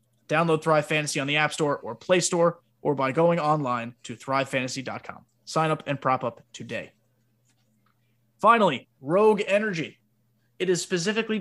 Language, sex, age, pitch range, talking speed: English, male, 30-49, 140-185 Hz, 145 wpm